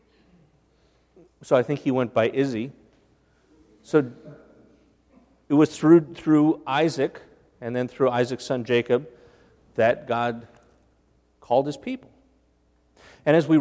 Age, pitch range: 40-59, 120-160 Hz